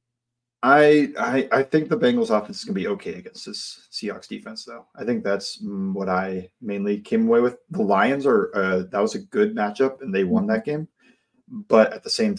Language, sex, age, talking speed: English, male, 30-49, 210 wpm